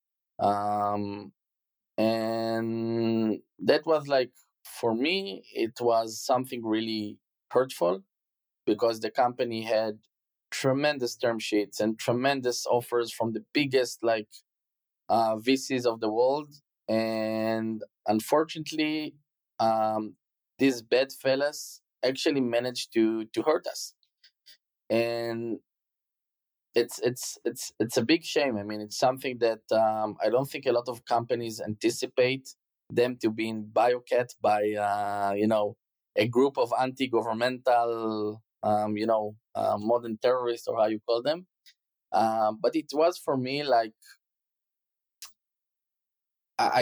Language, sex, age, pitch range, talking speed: English, male, 20-39, 110-130 Hz, 125 wpm